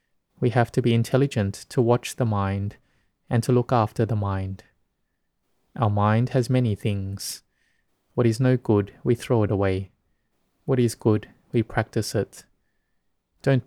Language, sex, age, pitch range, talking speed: English, male, 20-39, 105-125 Hz, 155 wpm